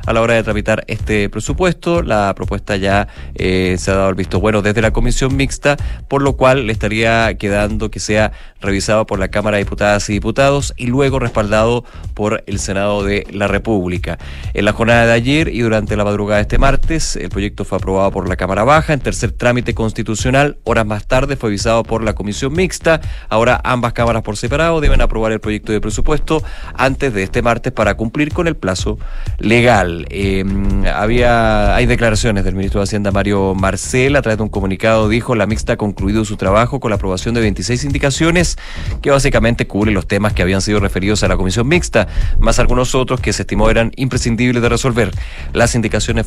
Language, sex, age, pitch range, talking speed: Spanish, male, 30-49, 100-130 Hz, 200 wpm